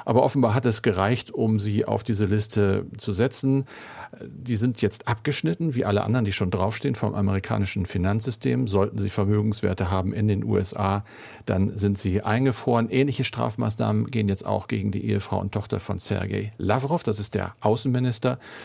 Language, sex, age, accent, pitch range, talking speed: German, male, 50-69, German, 100-120 Hz, 170 wpm